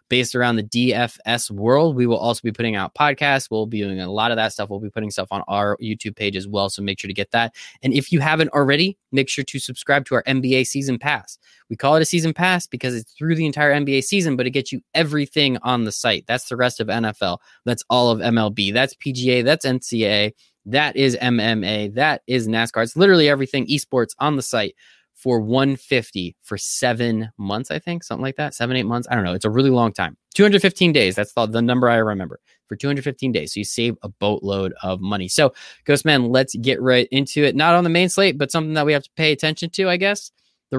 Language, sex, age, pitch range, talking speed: English, male, 20-39, 110-150 Hz, 235 wpm